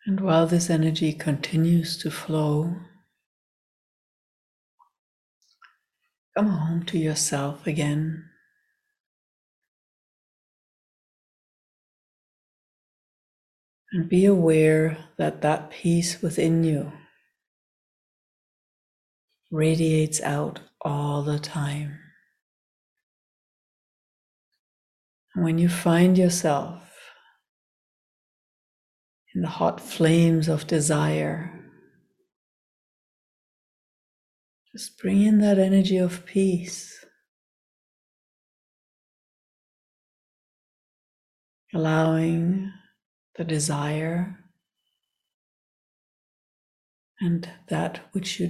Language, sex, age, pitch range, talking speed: English, female, 60-79, 155-180 Hz, 60 wpm